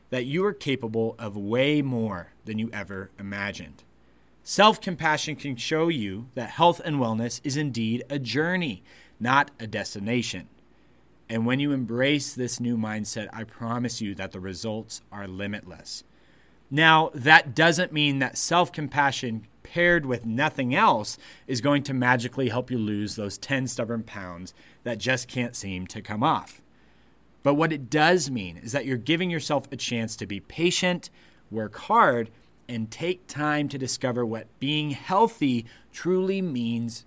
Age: 30-49